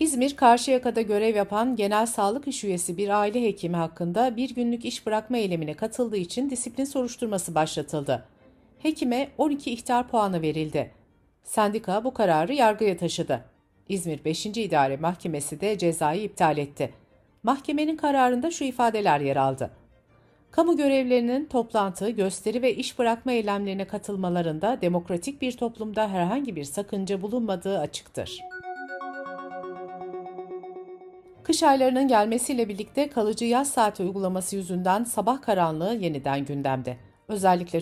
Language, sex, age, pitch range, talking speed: Turkish, female, 60-79, 175-250 Hz, 120 wpm